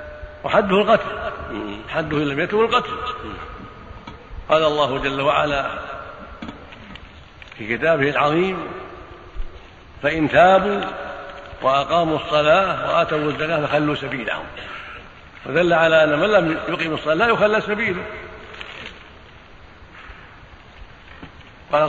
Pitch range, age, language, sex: 140-165 Hz, 60-79, Arabic, male